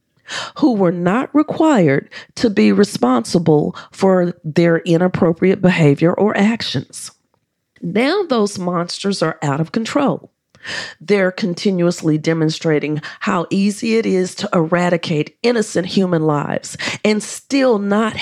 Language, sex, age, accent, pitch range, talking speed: English, female, 40-59, American, 165-220 Hz, 115 wpm